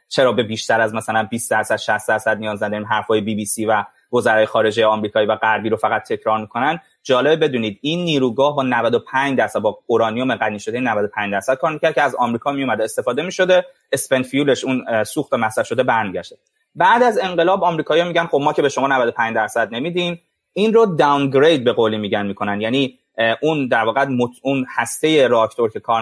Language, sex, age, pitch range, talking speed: Persian, male, 20-39, 110-175 Hz, 195 wpm